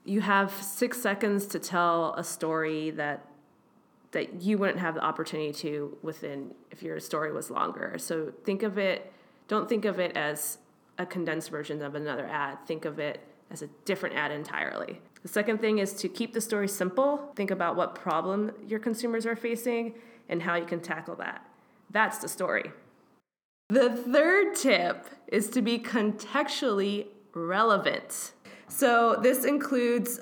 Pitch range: 170-220 Hz